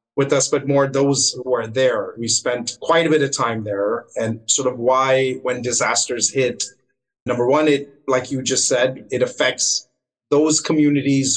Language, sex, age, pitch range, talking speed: English, male, 30-49, 130-155 Hz, 180 wpm